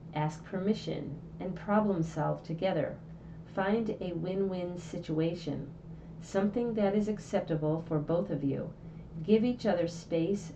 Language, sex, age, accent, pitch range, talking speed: English, female, 40-59, American, 160-190 Hz, 125 wpm